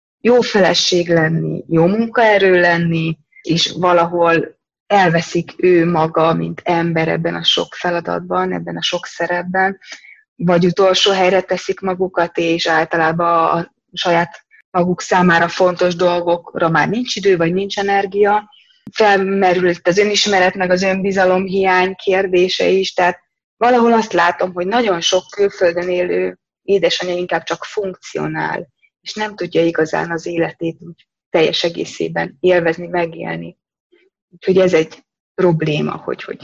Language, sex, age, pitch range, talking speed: Hungarian, female, 20-39, 165-190 Hz, 130 wpm